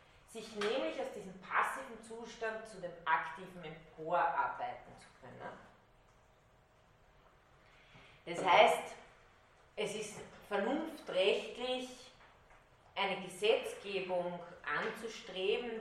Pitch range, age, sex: 175-215 Hz, 30-49, female